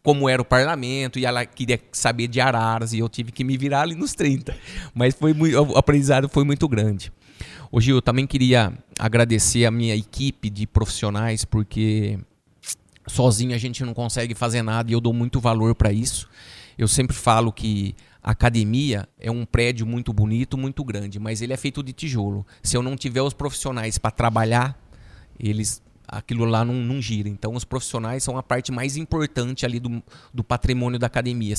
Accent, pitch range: Brazilian, 110-130 Hz